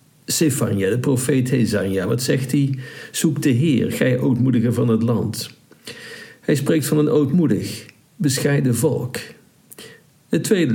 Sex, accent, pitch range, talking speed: male, Dutch, 110-135 Hz, 135 wpm